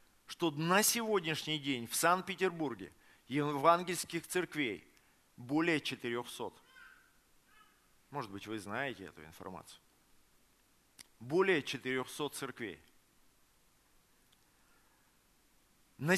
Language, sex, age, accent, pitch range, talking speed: Russian, male, 40-59, native, 145-205 Hz, 75 wpm